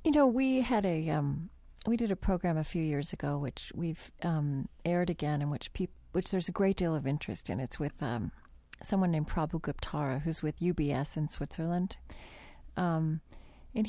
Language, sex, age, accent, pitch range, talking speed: English, female, 40-59, American, 155-195 Hz, 200 wpm